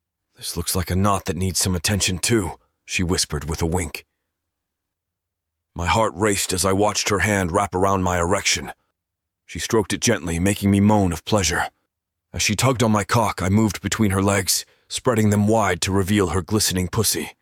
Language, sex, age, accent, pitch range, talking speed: English, male, 30-49, American, 85-105 Hz, 190 wpm